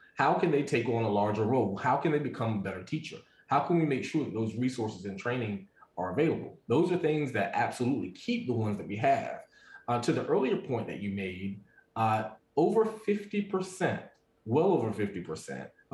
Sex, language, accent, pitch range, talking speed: male, English, American, 110-155 Hz, 195 wpm